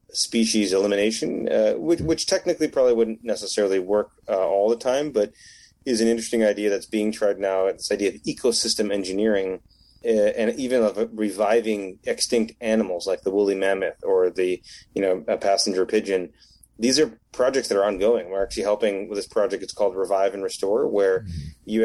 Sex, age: male, 30-49